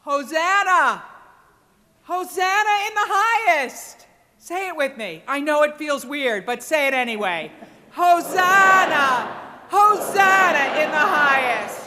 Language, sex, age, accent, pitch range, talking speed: English, female, 50-69, American, 245-340 Hz, 115 wpm